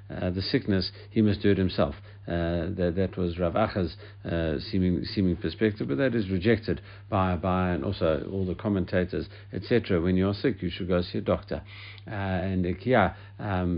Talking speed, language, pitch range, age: 175 wpm, English, 90-110 Hz, 60-79